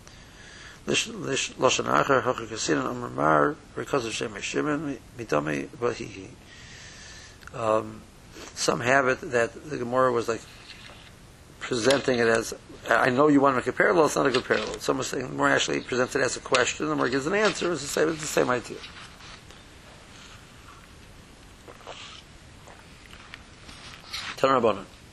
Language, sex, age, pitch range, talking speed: English, male, 60-79, 110-130 Hz, 115 wpm